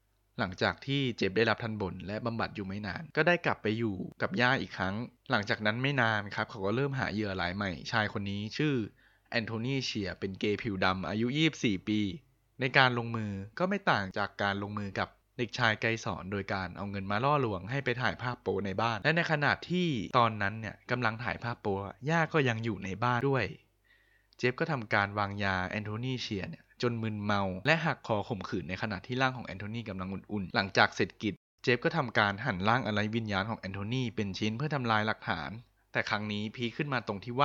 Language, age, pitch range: Thai, 20-39, 100-125 Hz